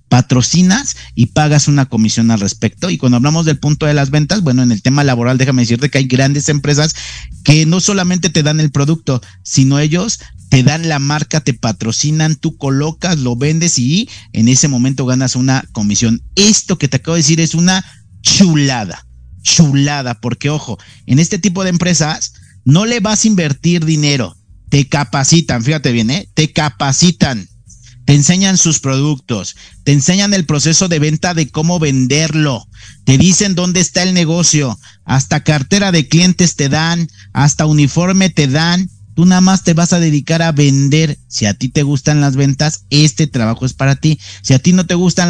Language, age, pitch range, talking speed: Spanish, 50-69, 125-165 Hz, 180 wpm